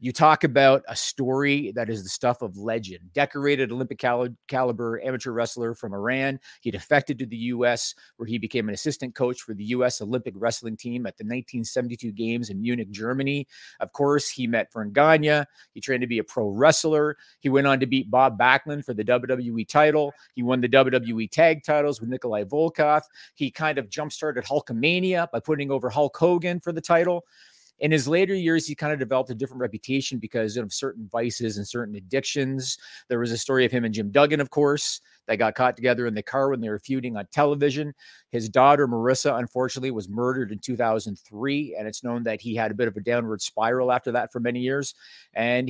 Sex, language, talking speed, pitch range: male, English, 205 wpm, 115-145 Hz